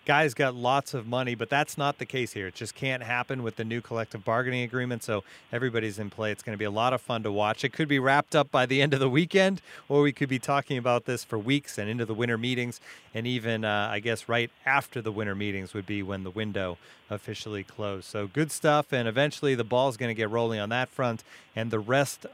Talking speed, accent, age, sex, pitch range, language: 250 wpm, American, 30-49, male, 110-140 Hz, English